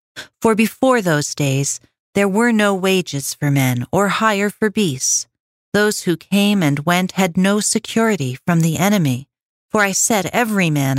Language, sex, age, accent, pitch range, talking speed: English, female, 40-59, American, 140-195 Hz, 165 wpm